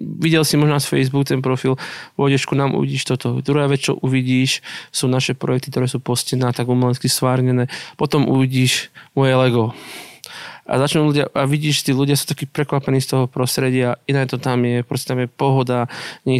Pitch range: 125-140 Hz